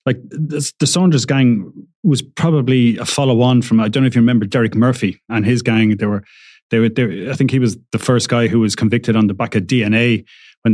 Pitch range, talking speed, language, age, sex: 110-130 Hz, 235 wpm, English, 30-49, male